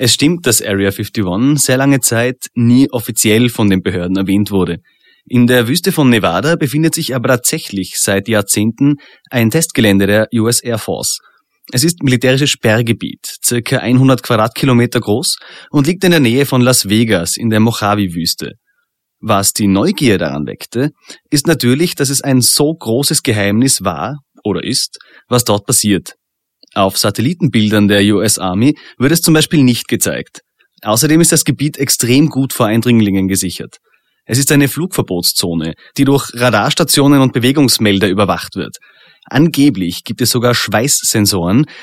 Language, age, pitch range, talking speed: German, 30-49, 105-145 Hz, 150 wpm